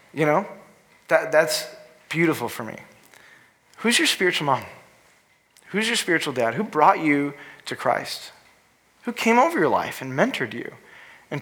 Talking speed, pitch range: 150 wpm, 145-190 Hz